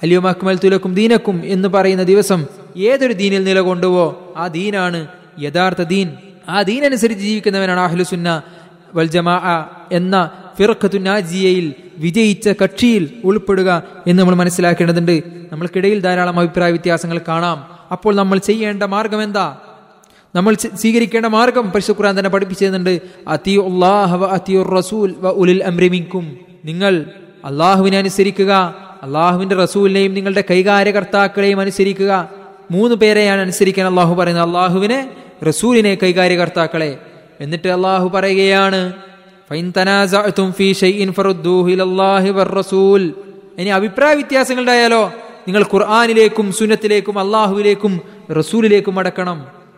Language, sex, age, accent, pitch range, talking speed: Malayalam, male, 20-39, native, 180-205 Hz, 75 wpm